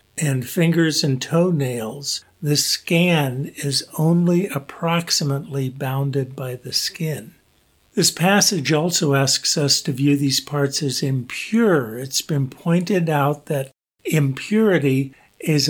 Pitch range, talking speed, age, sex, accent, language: 135-165 Hz, 120 wpm, 50-69, male, American, English